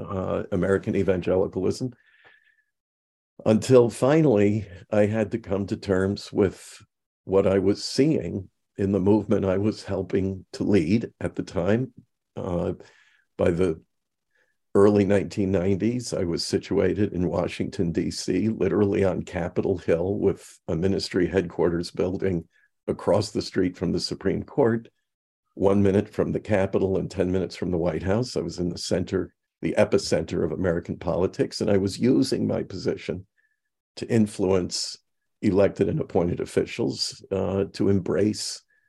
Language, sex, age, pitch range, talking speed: English, male, 50-69, 95-110 Hz, 140 wpm